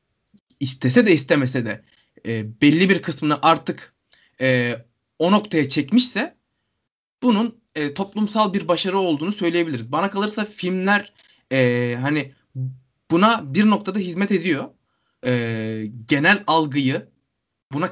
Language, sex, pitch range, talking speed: Turkish, male, 130-185 Hz, 115 wpm